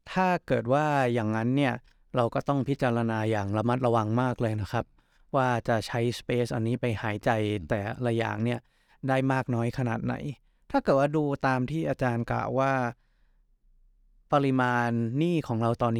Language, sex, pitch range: Thai, male, 115-140 Hz